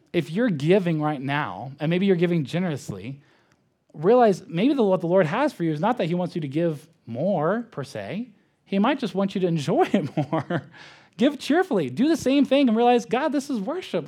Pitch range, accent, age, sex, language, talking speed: 145-215 Hz, American, 20-39, male, English, 215 wpm